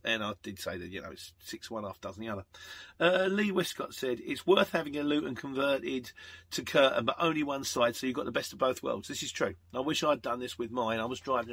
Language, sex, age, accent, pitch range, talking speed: English, male, 40-59, British, 95-140 Hz, 265 wpm